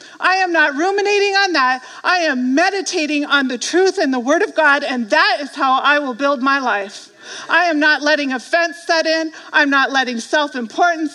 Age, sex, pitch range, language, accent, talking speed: 40-59, female, 235-320 Hz, English, American, 200 wpm